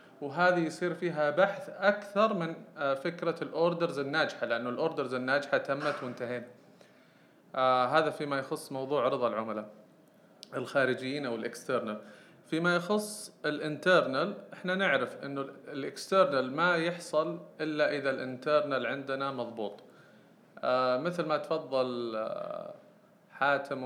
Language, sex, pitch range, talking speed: Arabic, male, 125-170 Hz, 110 wpm